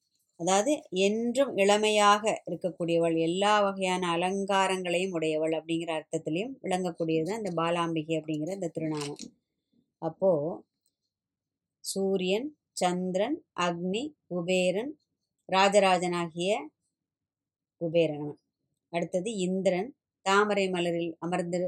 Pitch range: 170-205 Hz